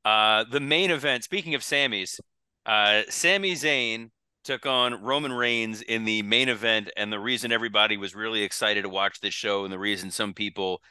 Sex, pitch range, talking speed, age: male, 100-120 Hz, 180 wpm, 30-49